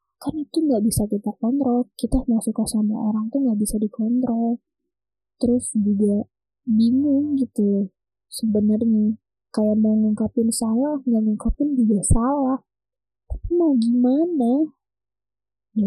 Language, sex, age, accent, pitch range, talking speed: Indonesian, female, 20-39, native, 205-250 Hz, 120 wpm